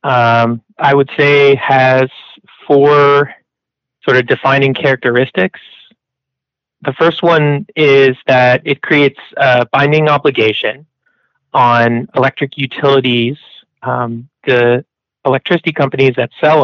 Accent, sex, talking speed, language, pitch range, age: American, male, 105 wpm, English, 125-145 Hz, 30-49